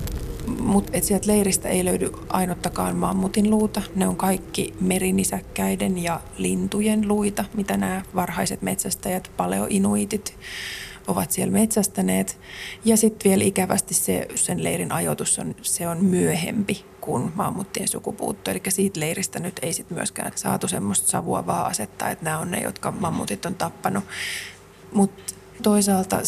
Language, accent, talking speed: Finnish, native, 135 wpm